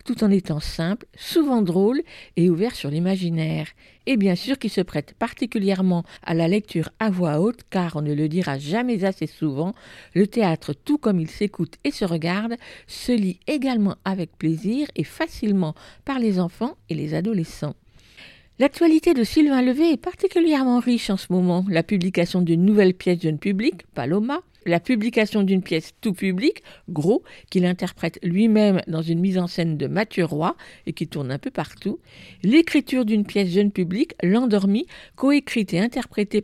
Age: 50-69